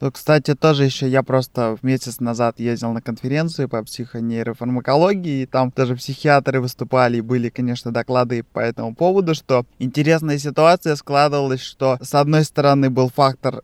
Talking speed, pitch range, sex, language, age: 160 wpm, 125-155 Hz, male, Russian, 20-39